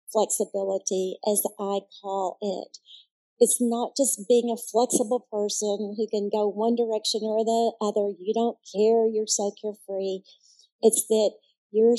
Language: English